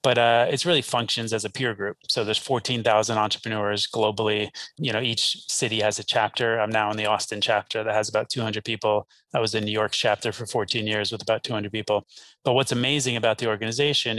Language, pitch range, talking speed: English, 110-130 Hz, 215 wpm